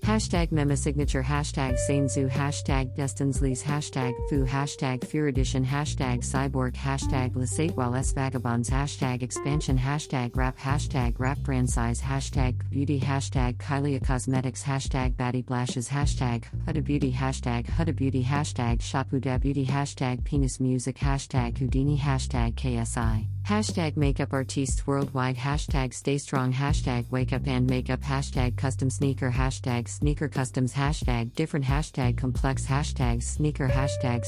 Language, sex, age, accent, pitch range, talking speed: English, female, 50-69, American, 120-140 Hz, 140 wpm